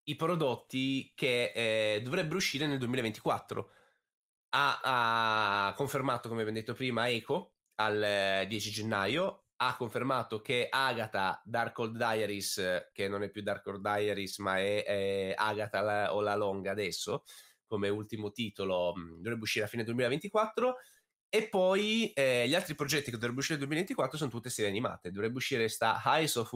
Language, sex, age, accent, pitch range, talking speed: Italian, male, 20-39, native, 105-140 Hz, 160 wpm